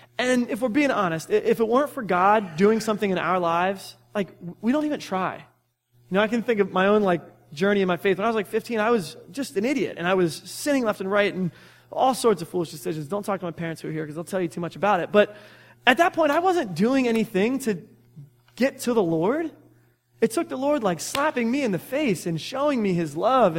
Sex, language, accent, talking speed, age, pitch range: male, English, American, 255 wpm, 20-39, 155-210 Hz